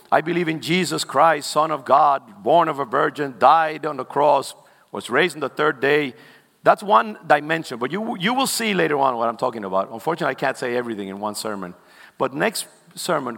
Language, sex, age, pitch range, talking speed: English, male, 50-69, 145-230 Hz, 210 wpm